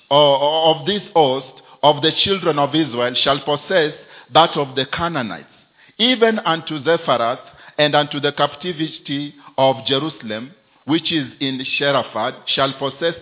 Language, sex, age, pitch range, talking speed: English, male, 50-69, 145-215 Hz, 130 wpm